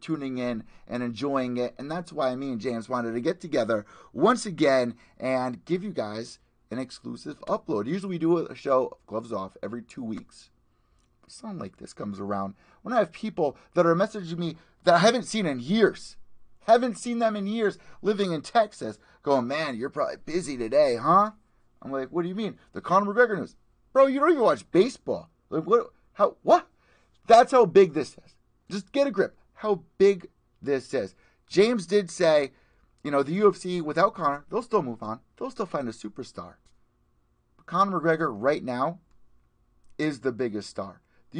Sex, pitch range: male, 125-200 Hz